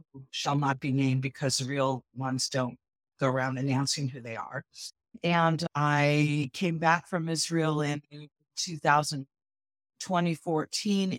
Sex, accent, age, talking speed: female, American, 50-69, 130 wpm